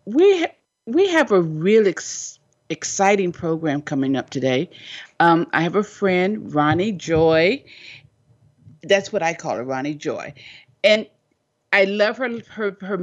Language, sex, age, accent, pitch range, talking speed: English, female, 50-69, American, 155-220 Hz, 145 wpm